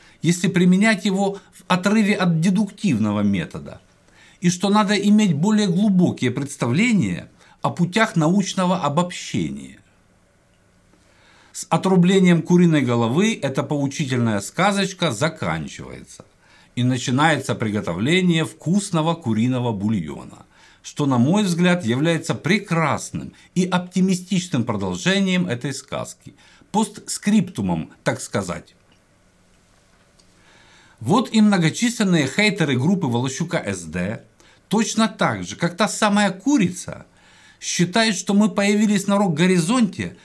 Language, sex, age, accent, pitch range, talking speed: Russian, male, 50-69, native, 140-210 Hz, 100 wpm